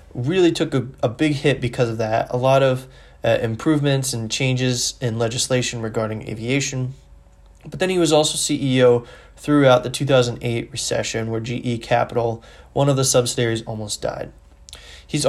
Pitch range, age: 115-140 Hz, 20-39